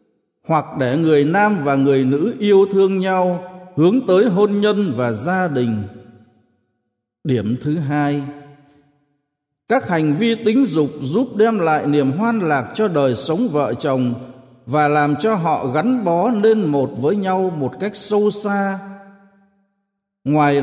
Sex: male